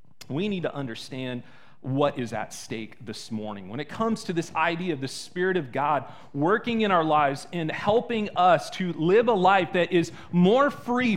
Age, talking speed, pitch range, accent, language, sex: 30-49, 195 wpm, 120-185 Hz, American, English, male